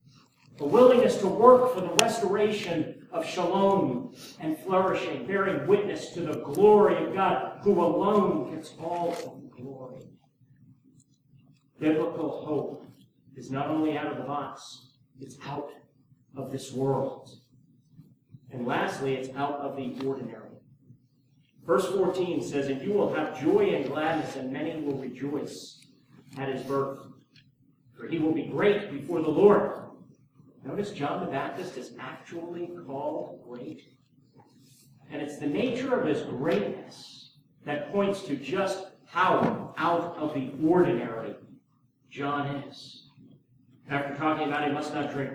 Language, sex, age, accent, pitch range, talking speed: English, male, 40-59, American, 135-185 Hz, 140 wpm